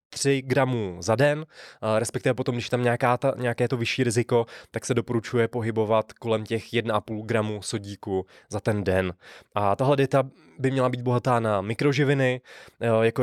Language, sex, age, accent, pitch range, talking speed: Czech, male, 20-39, native, 105-130 Hz, 170 wpm